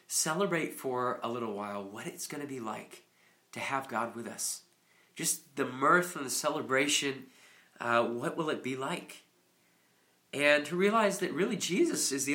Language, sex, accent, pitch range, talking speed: English, male, American, 125-170 Hz, 175 wpm